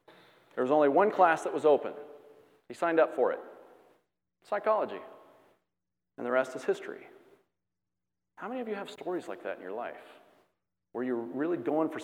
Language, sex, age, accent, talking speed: English, male, 40-59, American, 175 wpm